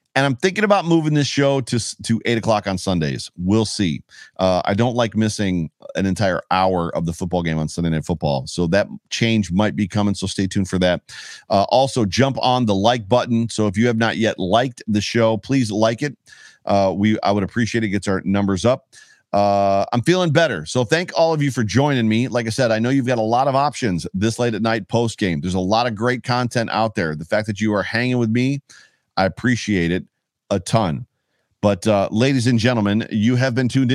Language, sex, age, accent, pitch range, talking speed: English, male, 40-59, American, 95-125 Hz, 230 wpm